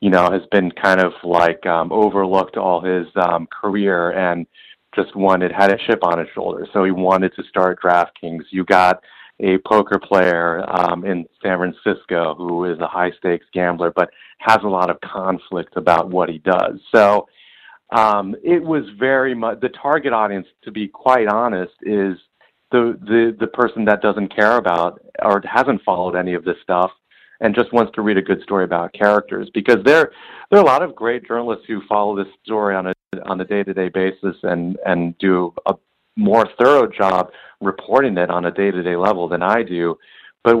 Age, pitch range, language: 40-59, 90-105 Hz, English